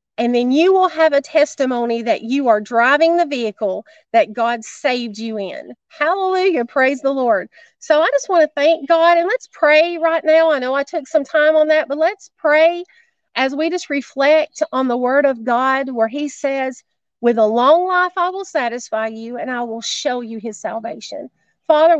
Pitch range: 240-330 Hz